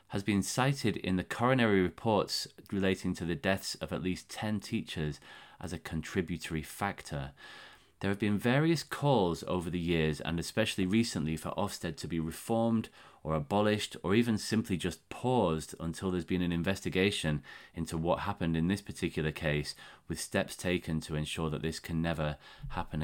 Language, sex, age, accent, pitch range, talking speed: English, male, 30-49, British, 80-105 Hz, 170 wpm